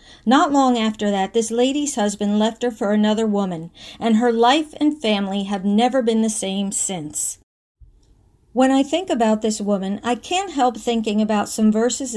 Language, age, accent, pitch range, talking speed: English, 50-69, American, 205-250 Hz, 180 wpm